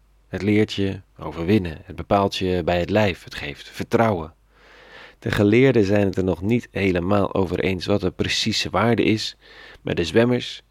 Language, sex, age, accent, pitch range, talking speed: Dutch, male, 40-59, Dutch, 85-110 Hz, 175 wpm